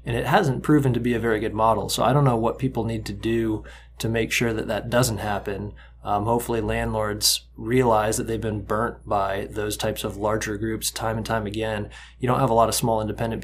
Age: 20-39